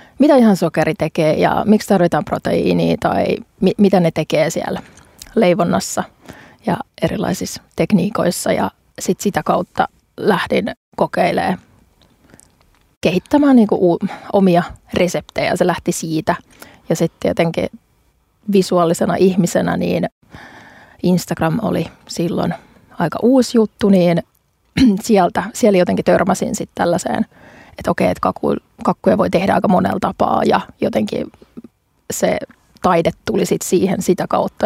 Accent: native